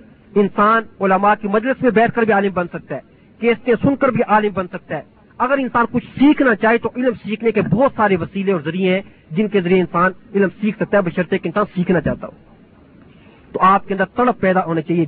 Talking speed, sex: 225 wpm, male